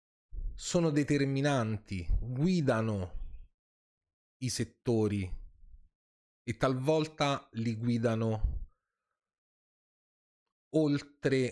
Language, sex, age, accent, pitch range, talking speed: Italian, male, 30-49, native, 95-130 Hz, 50 wpm